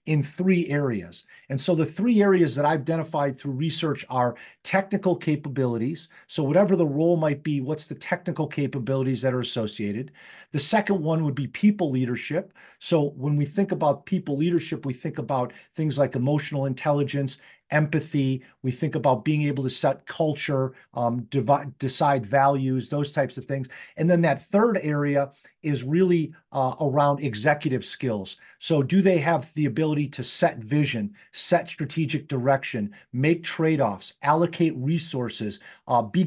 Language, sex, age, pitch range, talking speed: English, male, 50-69, 135-170 Hz, 155 wpm